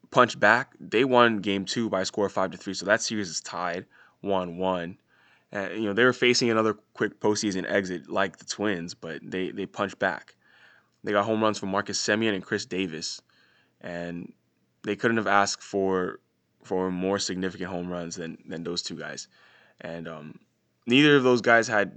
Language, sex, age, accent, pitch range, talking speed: English, male, 10-29, American, 90-105 Hz, 195 wpm